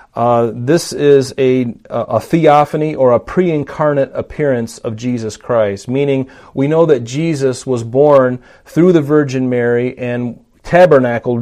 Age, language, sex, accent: 40-59, English, male, American